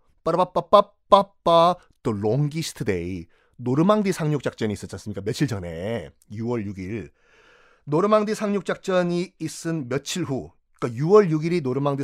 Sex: male